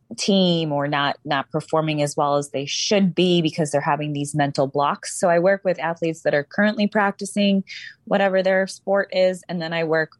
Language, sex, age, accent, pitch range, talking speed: English, female, 20-39, American, 150-185 Hz, 200 wpm